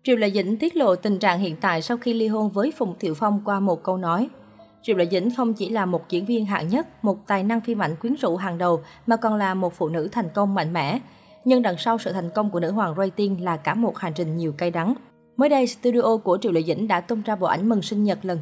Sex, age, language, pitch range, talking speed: female, 20-39, Vietnamese, 175-230 Hz, 275 wpm